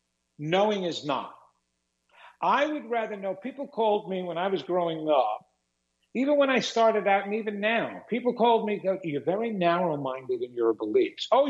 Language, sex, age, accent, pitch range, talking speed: English, male, 50-69, American, 160-230 Hz, 170 wpm